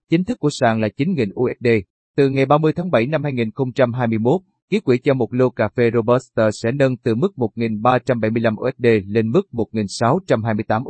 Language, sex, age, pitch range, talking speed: Vietnamese, male, 30-49, 115-140 Hz, 170 wpm